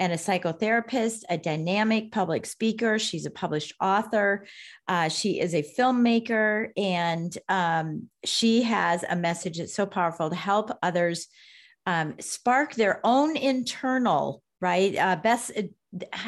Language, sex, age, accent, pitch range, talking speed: English, female, 40-59, American, 170-215 Hz, 135 wpm